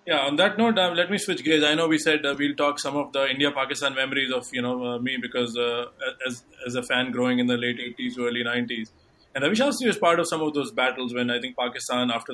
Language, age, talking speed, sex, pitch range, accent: English, 20-39, 265 wpm, male, 120-140 Hz, Indian